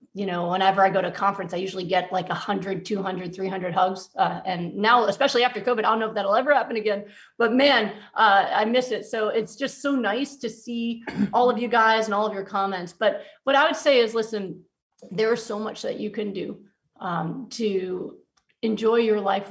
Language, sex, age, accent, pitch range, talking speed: English, female, 30-49, American, 190-220 Hz, 220 wpm